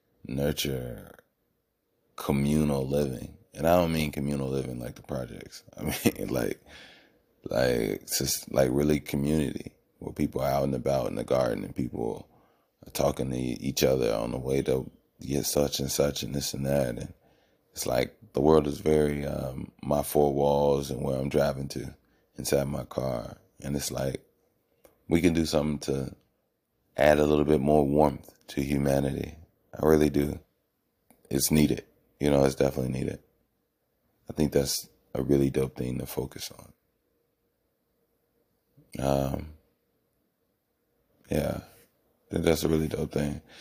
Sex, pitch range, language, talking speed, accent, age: male, 70-75 Hz, English, 155 wpm, American, 30-49